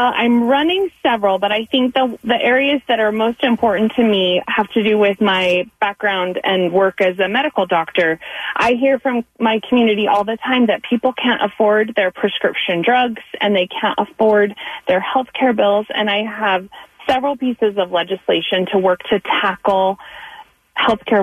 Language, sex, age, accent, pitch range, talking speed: English, female, 30-49, American, 190-235 Hz, 180 wpm